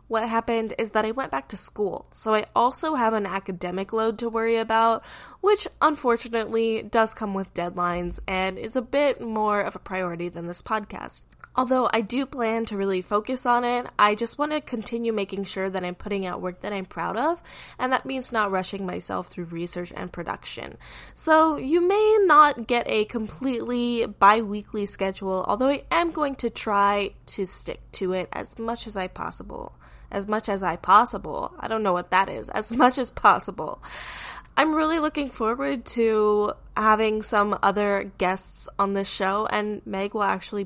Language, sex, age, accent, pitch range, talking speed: English, female, 10-29, American, 190-245 Hz, 185 wpm